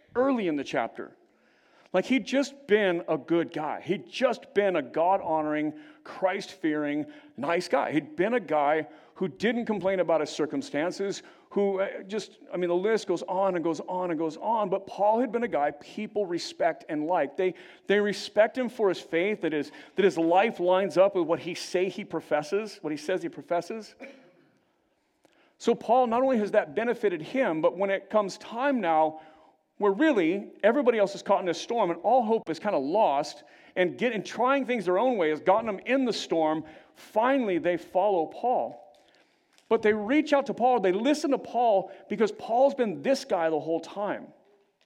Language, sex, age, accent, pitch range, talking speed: English, male, 50-69, American, 165-240 Hz, 190 wpm